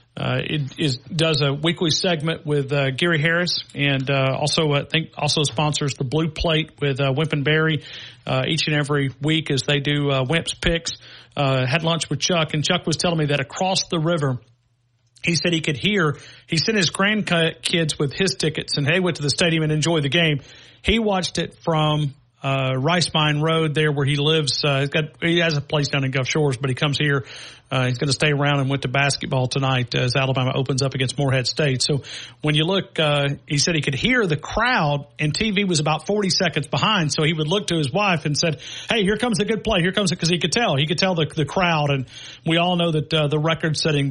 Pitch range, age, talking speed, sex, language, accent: 140-165 Hz, 40-59, 235 wpm, male, English, American